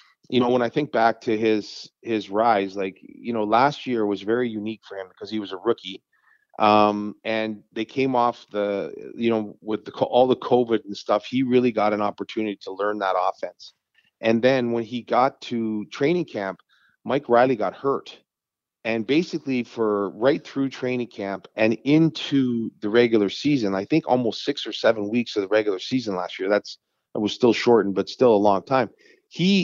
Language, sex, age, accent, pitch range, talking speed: English, male, 30-49, American, 110-135 Hz, 195 wpm